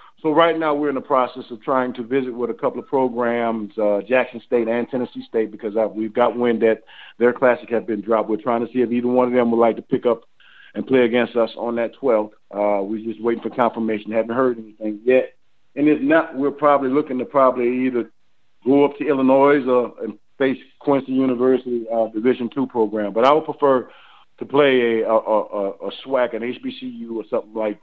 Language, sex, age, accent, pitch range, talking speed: English, male, 40-59, American, 110-130 Hz, 210 wpm